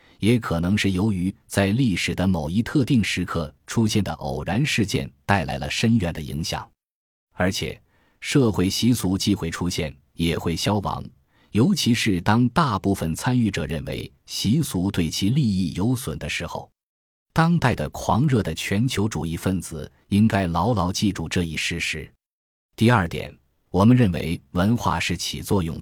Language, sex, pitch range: Chinese, male, 85-115 Hz